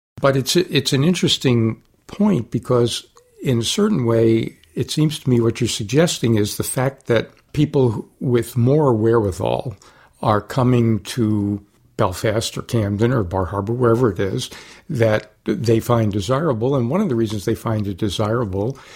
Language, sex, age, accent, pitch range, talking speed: English, male, 60-79, American, 110-130 Hz, 160 wpm